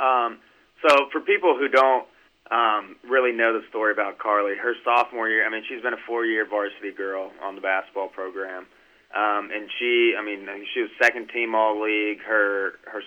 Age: 30-49